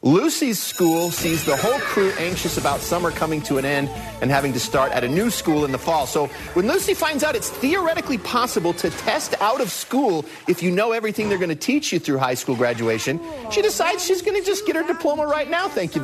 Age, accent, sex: 40-59, American, male